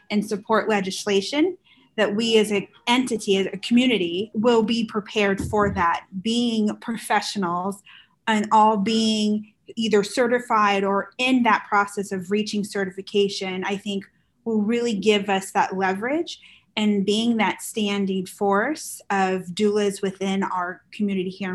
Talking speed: 135 wpm